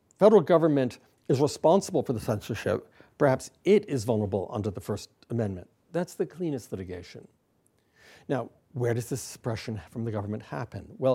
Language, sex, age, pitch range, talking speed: English, male, 60-79, 110-145 Hz, 160 wpm